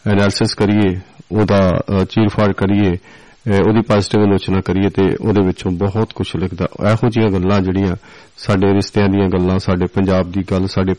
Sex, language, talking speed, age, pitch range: male, Punjabi, 160 wpm, 40-59, 95-110 Hz